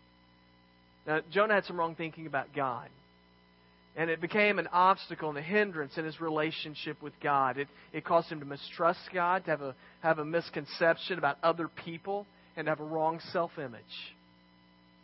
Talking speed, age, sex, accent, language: 170 wpm, 40-59, male, American, English